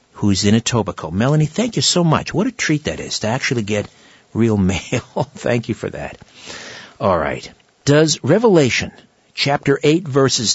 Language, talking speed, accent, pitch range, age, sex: English, 165 wpm, American, 115-155 Hz, 50-69, male